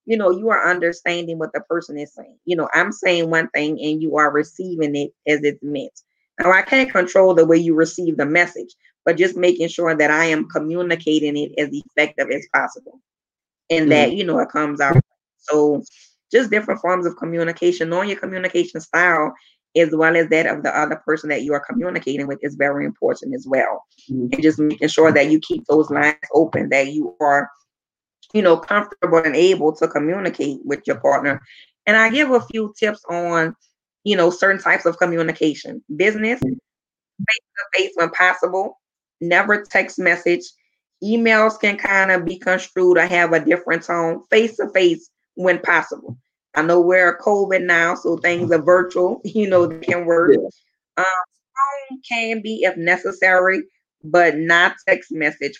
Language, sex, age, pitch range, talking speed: English, female, 20-39, 155-185 Hz, 175 wpm